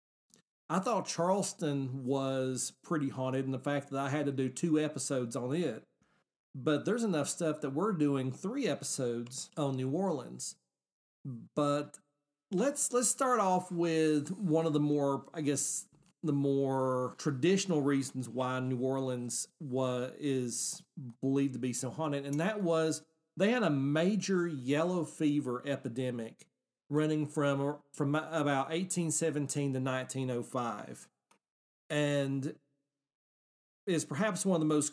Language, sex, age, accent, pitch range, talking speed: English, male, 40-59, American, 135-165 Hz, 135 wpm